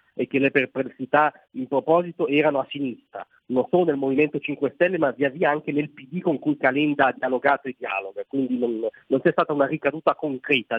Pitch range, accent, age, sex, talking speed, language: 140-185 Hz, native, 40-59, male, 200 wpm, Italian